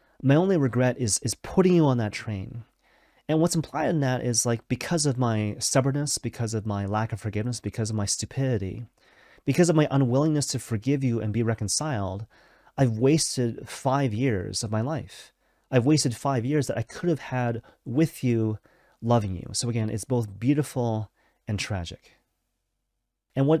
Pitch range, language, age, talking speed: 105-135 Hz, English, 30-49, 180 wpm